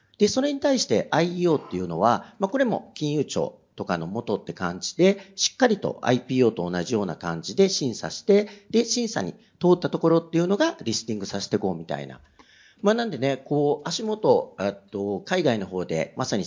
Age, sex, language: 50-69, male, Japanese